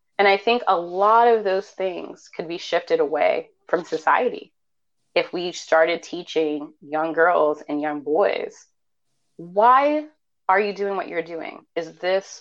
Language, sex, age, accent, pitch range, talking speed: English, female, 30-49, American, 175-250 Hz, 155 wpm